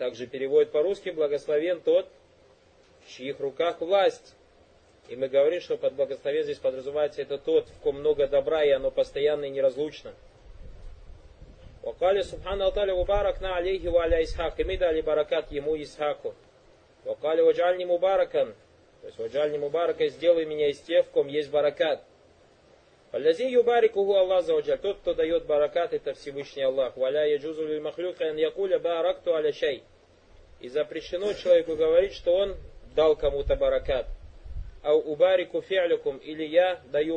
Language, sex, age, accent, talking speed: Russian, male, 30-49, native, 140 wpm